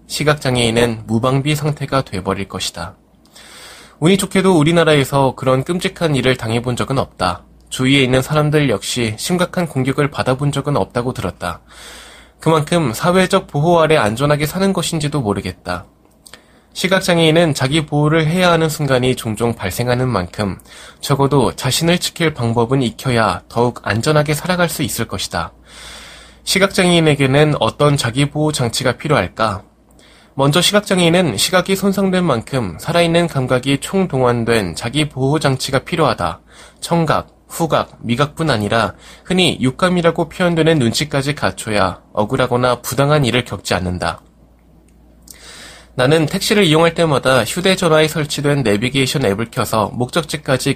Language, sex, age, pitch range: Korean, male, 20-39, 120-165 Hz